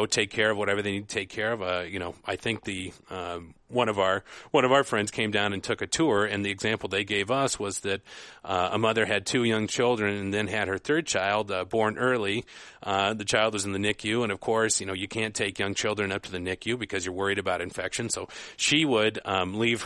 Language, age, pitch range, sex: English, 40-59, 100-110 Hz, male